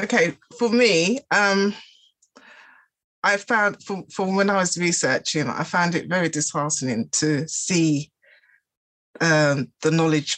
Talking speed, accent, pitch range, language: 125 wpm, British, 155-235 Hz, English